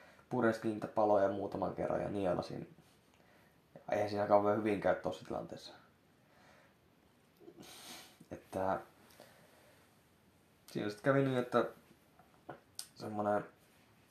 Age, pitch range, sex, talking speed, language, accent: 20-39, 100-115 Hz, male, 90 wpm, Finnish, native